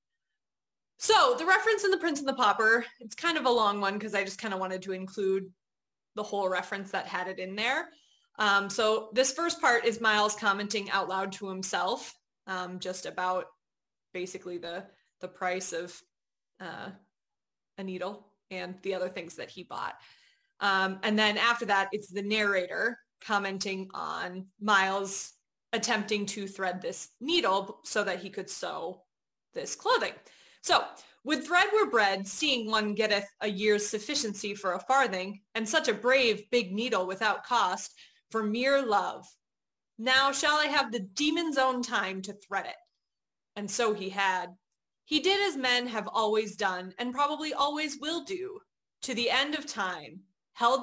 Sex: female